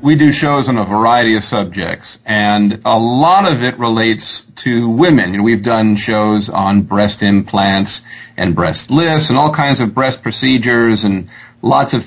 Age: 40-59